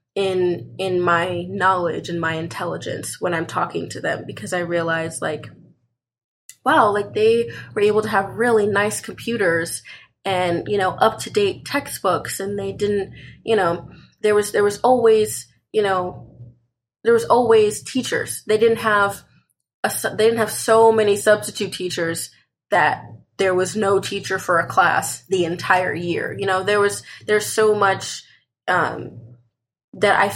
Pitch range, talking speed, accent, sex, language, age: 170-210 Hz, 160 wpm, American, female, English, 20-39